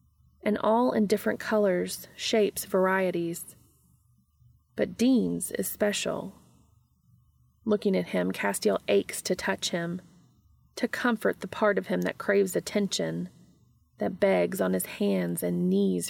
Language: English